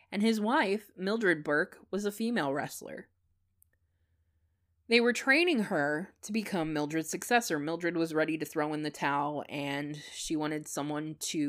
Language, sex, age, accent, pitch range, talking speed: English, female, 20-39, American, 145-210 Hz, 155 wpm